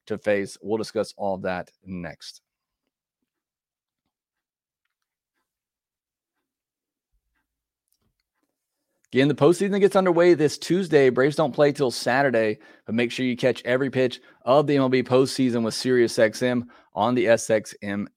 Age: 30-49